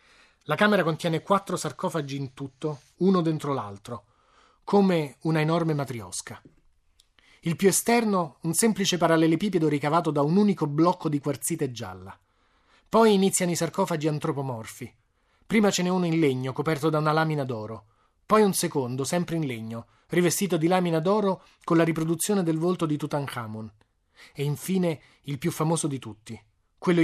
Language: Italian